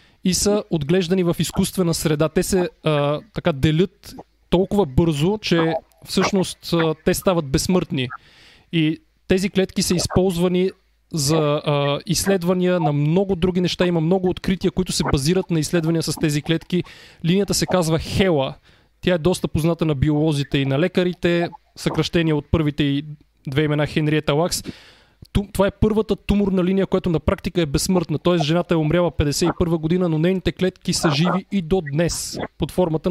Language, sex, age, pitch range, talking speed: Bulgarian, male, 20-39, 155-185 Hz, 160 wpm